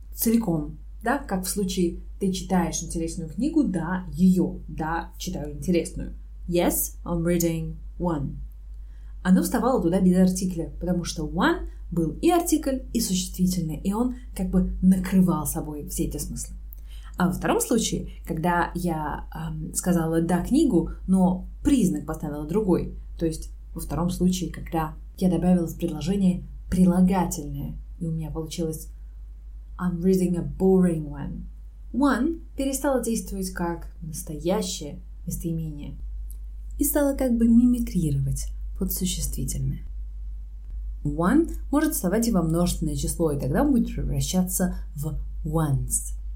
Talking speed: 130 wpm